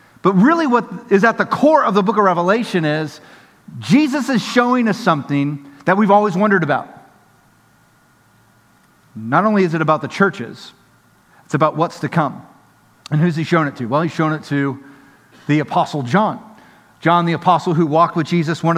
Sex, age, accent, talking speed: male, 40-59, American, 180 wpm